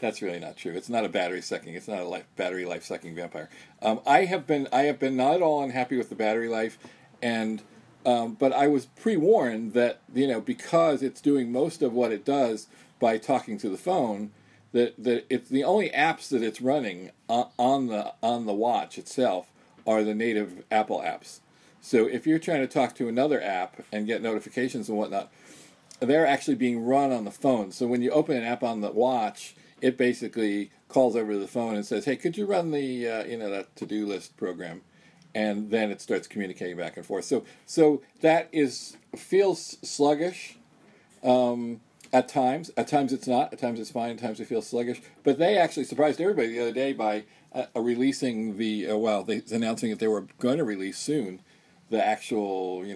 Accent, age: American, 40-59